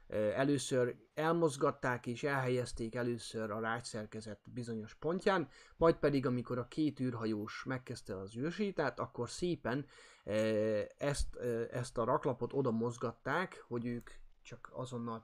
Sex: male